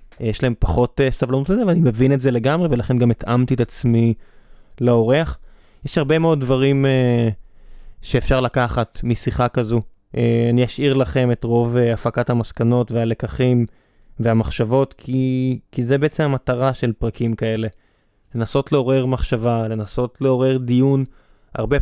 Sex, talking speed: male, 130 wpm